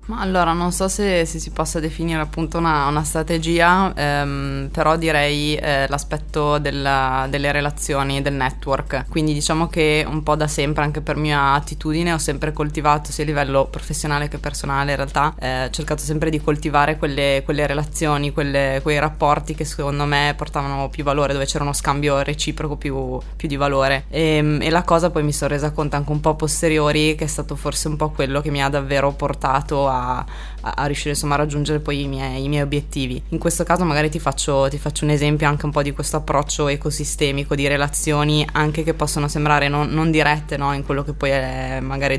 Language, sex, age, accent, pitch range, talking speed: Italian, female, 20-39, native, 140-155 Hz, 200 wpm